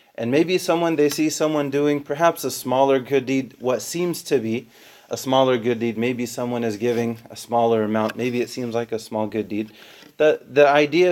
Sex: male